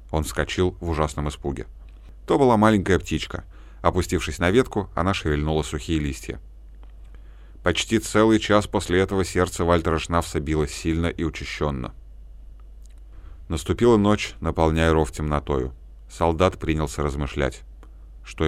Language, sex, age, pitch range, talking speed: Russian, male, 30-49, 75-95 Hz, 120 wpm